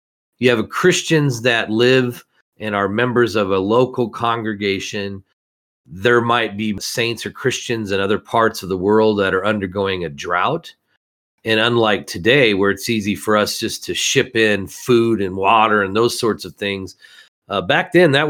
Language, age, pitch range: English, 40-59, 95-120 Hz